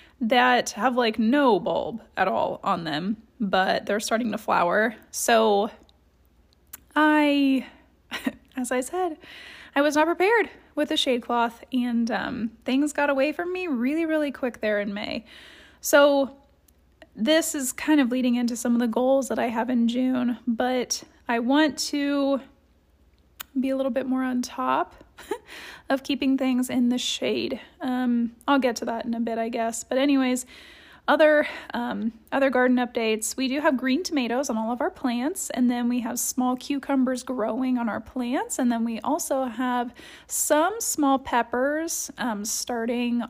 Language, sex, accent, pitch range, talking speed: English, female, American, 235-285 Hz, 165 wpm